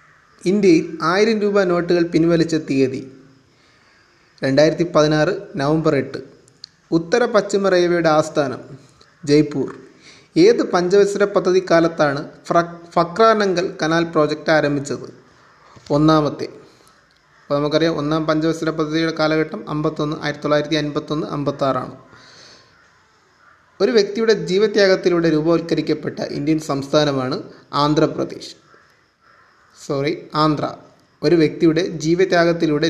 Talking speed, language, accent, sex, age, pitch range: 85 wpm, Malayalam, native, male, 30-49, 150-180 Hz